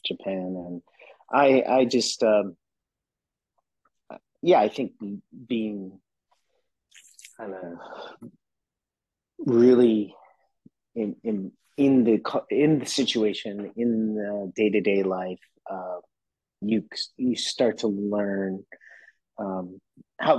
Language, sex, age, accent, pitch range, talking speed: English, male, 30-49, American, 95-110 Hz, 95 wpm